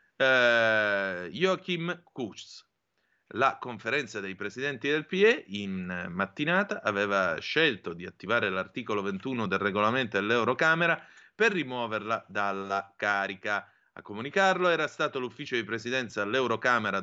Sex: male